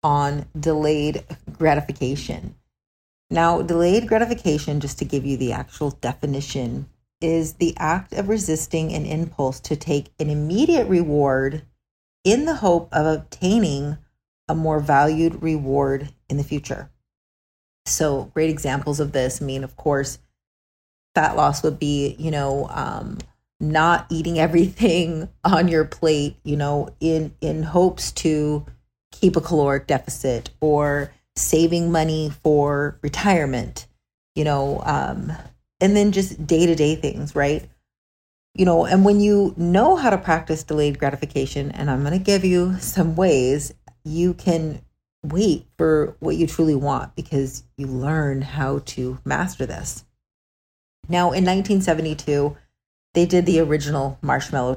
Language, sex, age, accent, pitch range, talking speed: English, female, 40-59, American, 140-165 Hz, 135 wpm